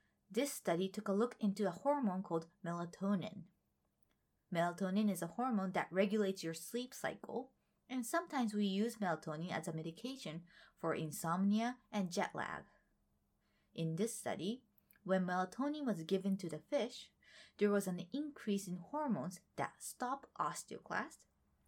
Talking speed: 140 wpm